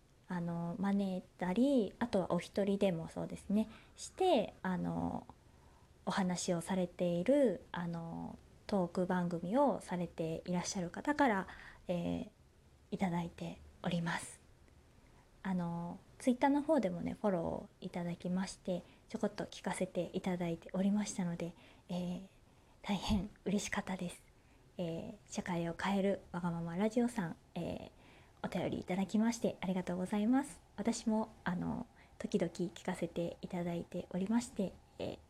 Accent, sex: native, female